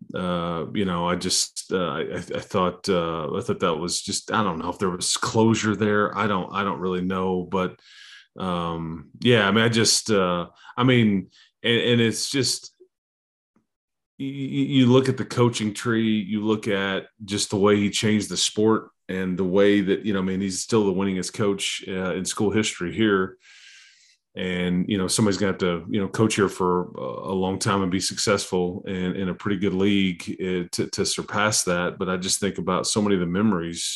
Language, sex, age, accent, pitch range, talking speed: English, male, 30-49, American, 90-105 Hz, 205 wpm